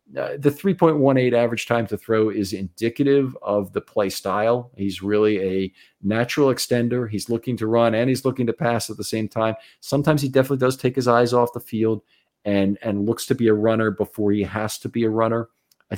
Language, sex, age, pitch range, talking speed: English, male, 40-59, 100-130 Hz, 210 wpm